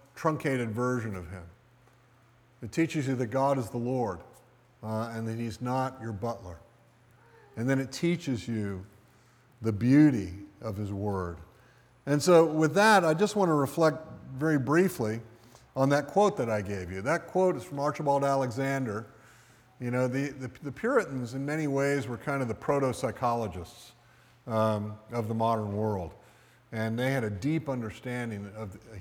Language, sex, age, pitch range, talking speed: English, male, 50-69, 115-140 Hz, 165 wpm